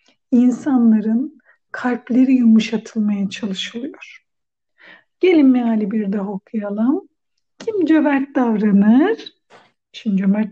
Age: 60-79